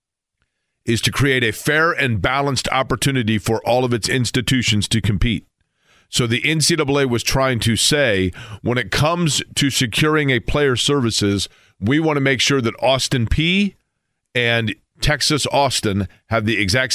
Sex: male